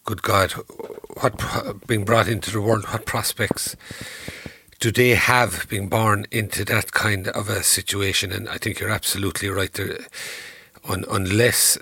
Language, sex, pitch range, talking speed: English, male, 105-140 Hz, 145 wpm